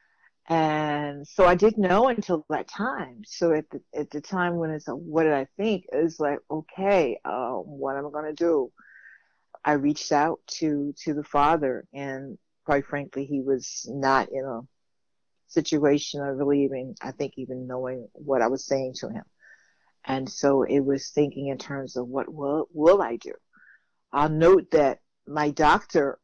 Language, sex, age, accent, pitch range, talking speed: English, female, 50-69, American, 135-160 Hz, 180 wpm